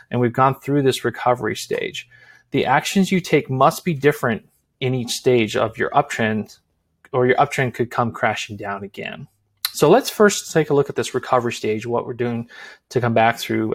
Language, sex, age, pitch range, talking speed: English, male, 30-49, 115-150 Hz, 195 wpm